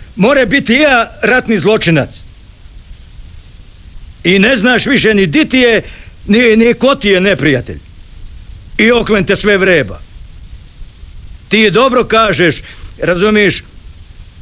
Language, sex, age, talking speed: Croatian, male, 50-69, 115 wpm